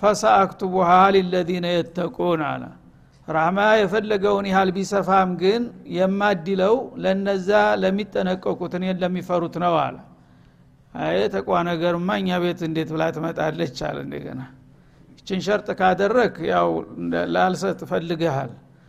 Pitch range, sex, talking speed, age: 170-200 Hz, male, 100 wpm, 60-79